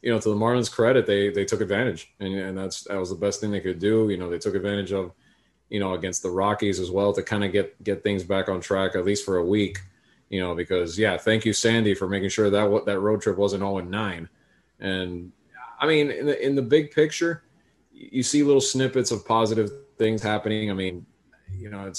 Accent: American